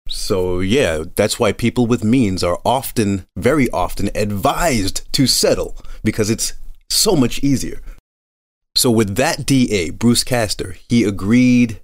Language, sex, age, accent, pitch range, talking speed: English, male, 30-49, American, 90-120 Hz, 135 wpm